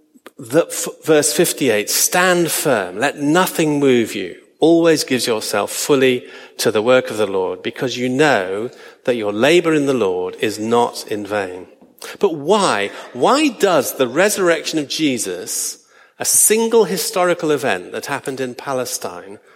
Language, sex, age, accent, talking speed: English, male, 50-69, British, 150 wpm